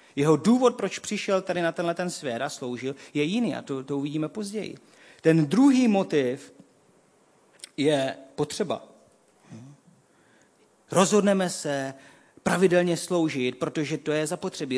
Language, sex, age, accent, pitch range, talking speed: Czech, male, 40-59, native, 120-180 Hz, 125 wpm